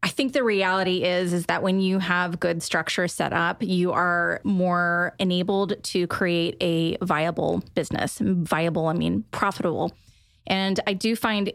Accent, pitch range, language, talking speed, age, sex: American, 175-205 Hz, English, 160 wpm, 20-39, female